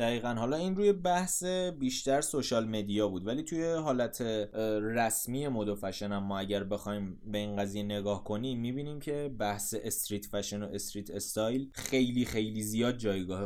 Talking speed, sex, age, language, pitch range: 160 wpm, male, 20-39, Persian, 105-130 Hz